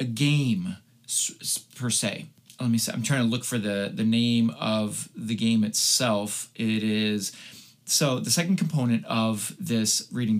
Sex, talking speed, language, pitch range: male, 160 wpm, English, 110-140 Hz